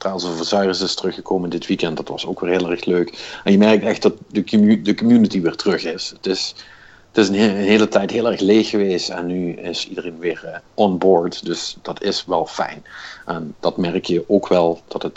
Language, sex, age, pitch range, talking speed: Dutch, male, 50-69, 90-110 Hz, 235 wpm